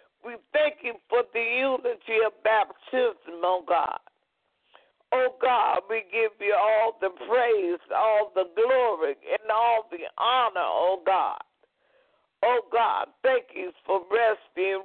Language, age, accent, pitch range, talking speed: English, 50-69, American, 215-295 Hz, 135 wpm